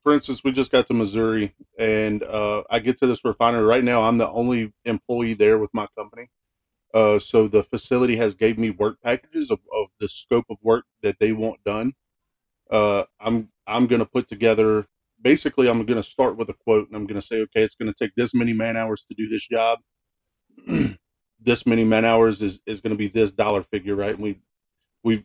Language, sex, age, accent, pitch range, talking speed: English, male, 30-49, American, 105-115 Hz, 205 wpm